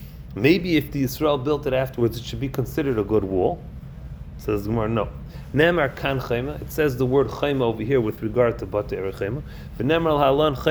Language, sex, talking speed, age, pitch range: English, male, 185 wpm, 30-49, 110-140 Hz